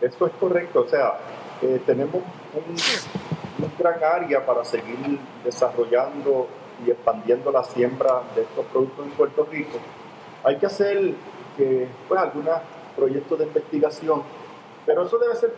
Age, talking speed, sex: 40-59, 130 wpm, male